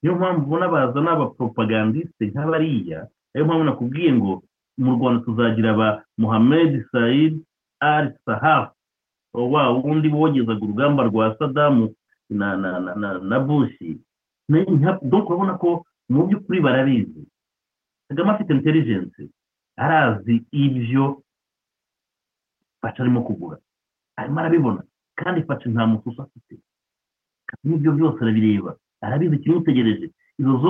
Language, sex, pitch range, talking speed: English, male, 125-165 Hz, 50 wpm